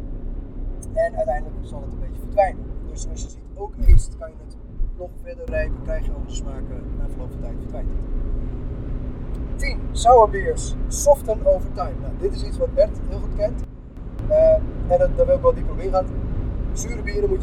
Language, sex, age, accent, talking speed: Dutch, male, 20-39, Dutch, 190 wpm